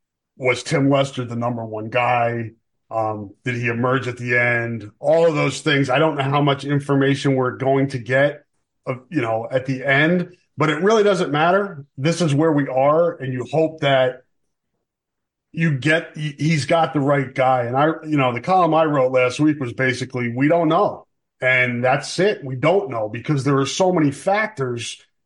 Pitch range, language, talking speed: 125-160 Hz, English, 195 wpm